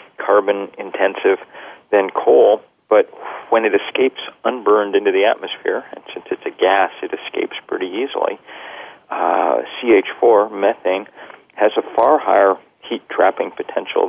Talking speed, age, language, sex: 125 wpm, 40-59, English, male